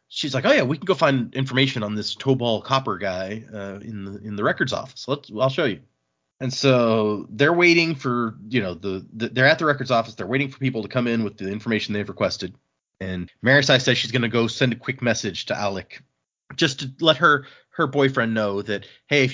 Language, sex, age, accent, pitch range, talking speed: English, male, 30-49, American, 100-135 Hz, 225 wpm